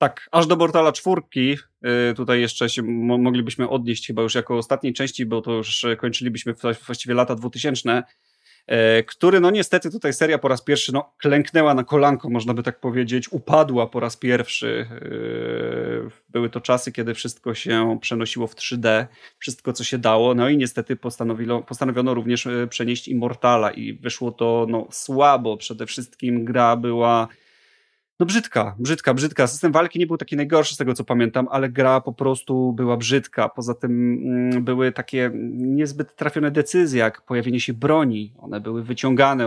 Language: Polish